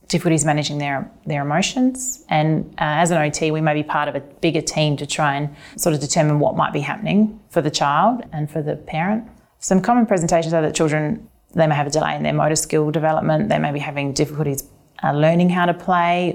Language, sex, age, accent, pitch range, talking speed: English, female, 30-49, Australian, 145-165 Hz, 225 wpm